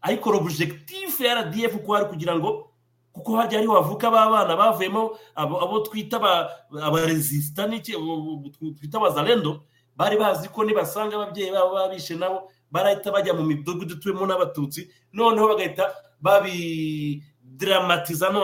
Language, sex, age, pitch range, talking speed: English, male, 30-49, 145-195 Hz, 155 wpm